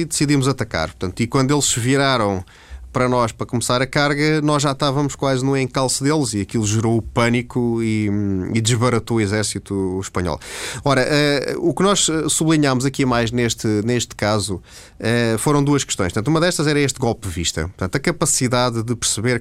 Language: Portuguese